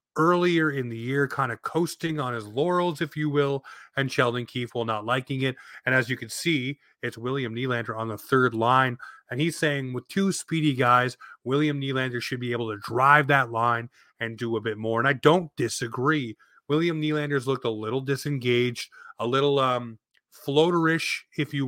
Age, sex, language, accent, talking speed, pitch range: 30-49, male, English, American, 190 wpm, 120-145 Hz